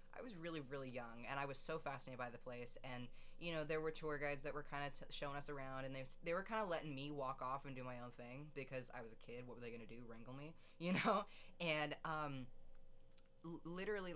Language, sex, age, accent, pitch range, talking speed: English, female, 20-39, American, 125-155 Hz, 260 wpm